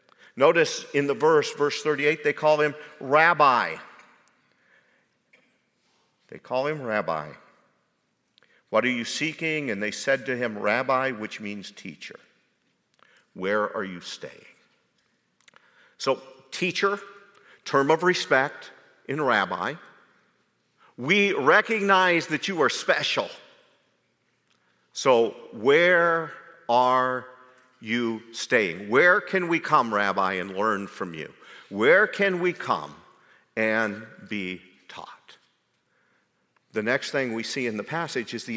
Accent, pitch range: American, 115-170 Hz